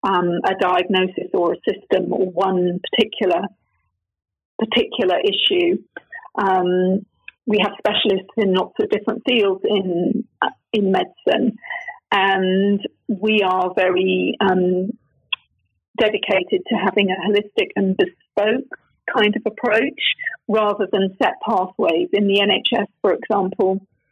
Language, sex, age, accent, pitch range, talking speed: English, female, 40-59, British, 190-235 Hz, 120 wpm